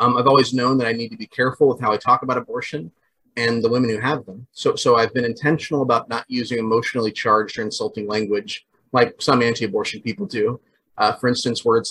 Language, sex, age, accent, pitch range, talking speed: English, male, 30-49, American, 115-140 Hz, 220 wpm